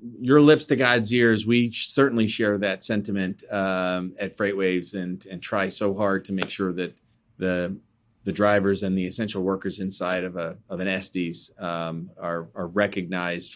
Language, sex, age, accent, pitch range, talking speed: English, male, 30-49, American, 100-135 Hz, 175 wpm